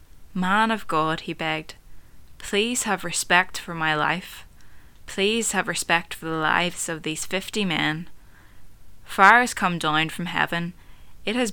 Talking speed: 150 wpm